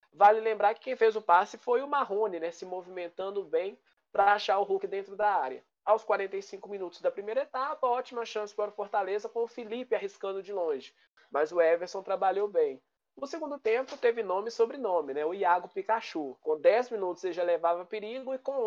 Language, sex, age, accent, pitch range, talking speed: Portuguese, male, 20-39, Brazilian, 195-275 Hz, 200 wpm